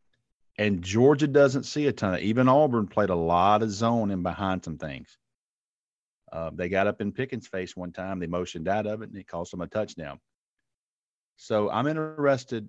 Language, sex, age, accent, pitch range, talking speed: English, male, 40-59, American, 95-115 Hz, 200 wpm